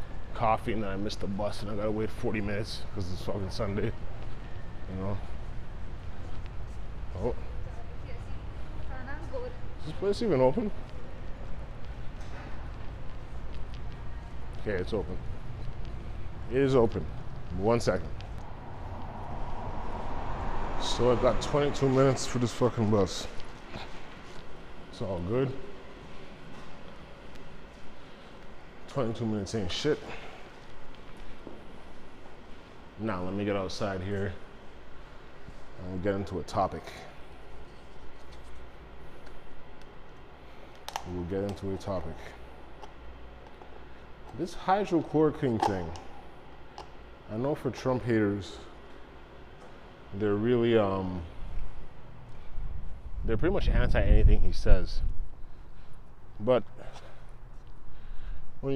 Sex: male